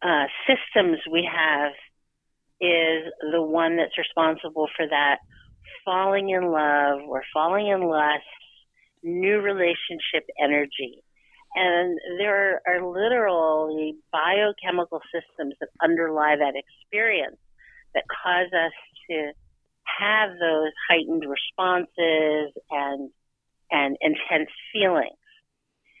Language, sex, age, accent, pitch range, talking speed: English, female, 40-59, American, 150-195 Hz, 100 wpm